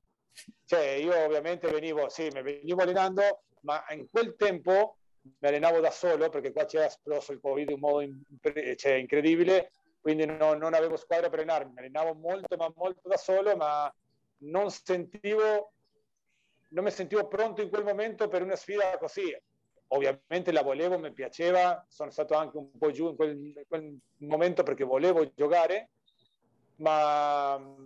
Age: 40-59